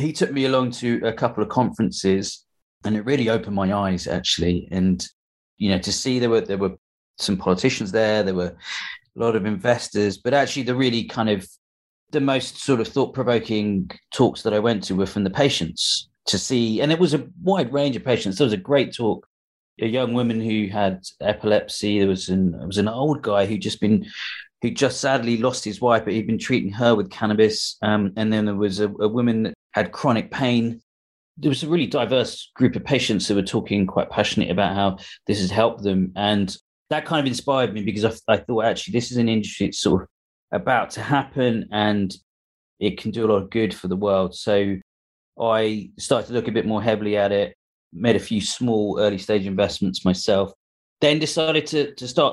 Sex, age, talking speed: male, 30-49, 215 wpm